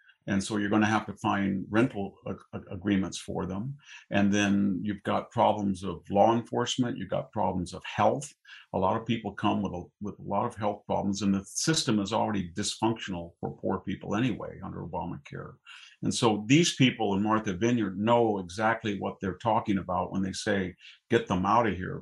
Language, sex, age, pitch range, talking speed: English, male, 50-69, 100-120 Hz, 195 wpm